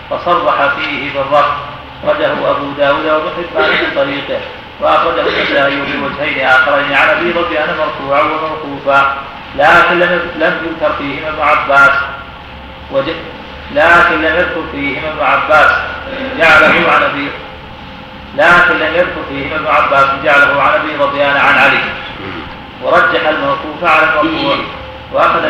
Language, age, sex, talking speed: Arabic, 40-59, male, 125 wpm